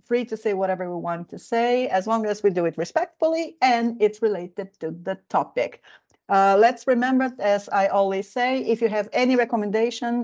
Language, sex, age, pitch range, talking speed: Finnish, female, 40-59, 185-230 Hz, 190 wpm